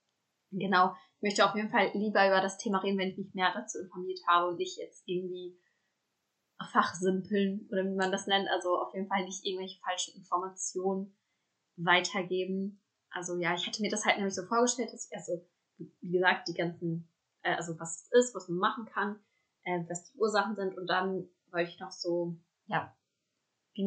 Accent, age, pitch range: German, 20-39, 180-200 Hz